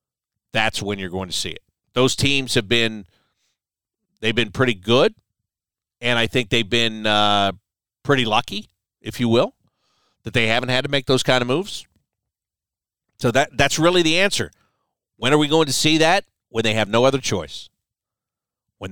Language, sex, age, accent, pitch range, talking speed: English, male, 50-69, American, 110-145 Hz, 180 wpm